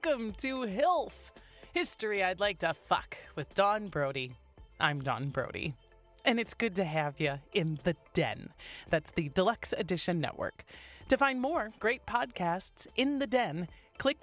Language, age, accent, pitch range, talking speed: English, 30-49, American, 170-235 Hz, 155 wpm